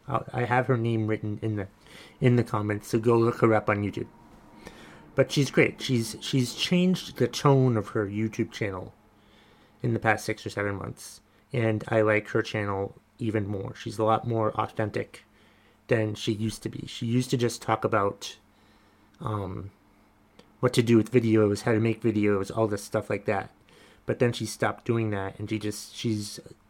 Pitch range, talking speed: 105-115 Hz, 190 wpm